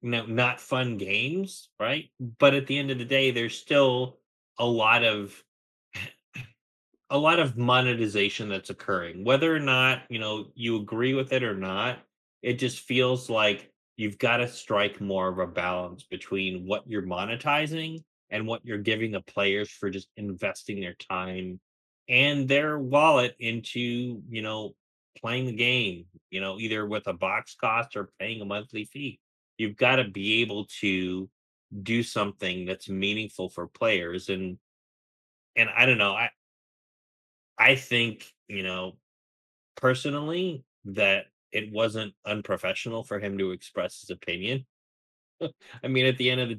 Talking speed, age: 160 wpm, 30-49